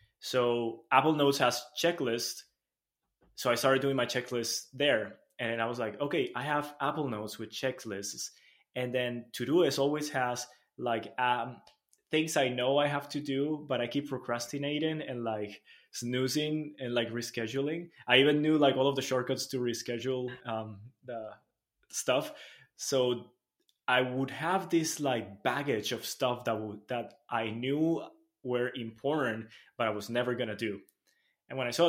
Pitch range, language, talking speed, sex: 115-140 Hz, English, 160 wpm, male